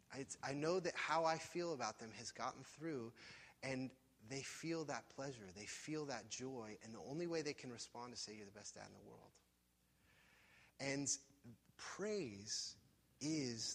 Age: 30-49